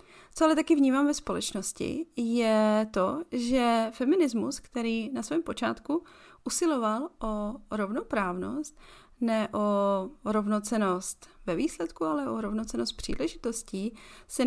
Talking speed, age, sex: 110 wpm, 30-49, female